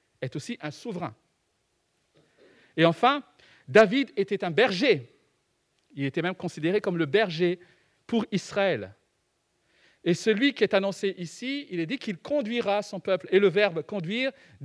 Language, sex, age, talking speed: French, male, 50-69, 155 wpm